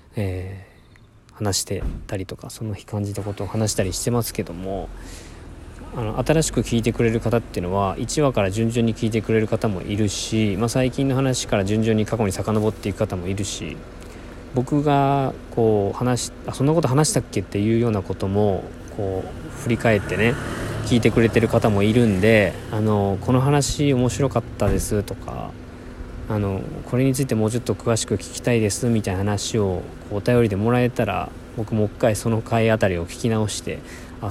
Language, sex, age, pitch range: Japanese, male, 20-39, 95-120 Hz